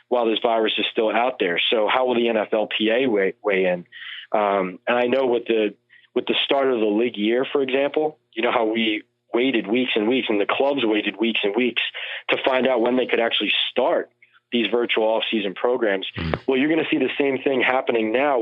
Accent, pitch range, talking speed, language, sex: American, 110-130 Hz, 220 wpm, English, male